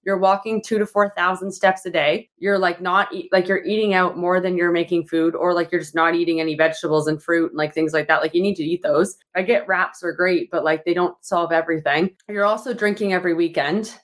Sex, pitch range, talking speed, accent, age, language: female, 175-210 Hz, 245 wpm, American, 20-39, English